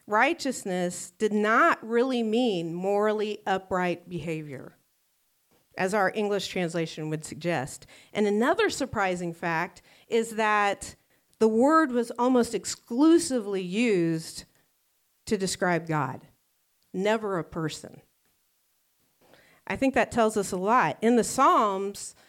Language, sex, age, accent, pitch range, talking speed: English, female, 50-69, American, 180-235 Hz, 115 wpm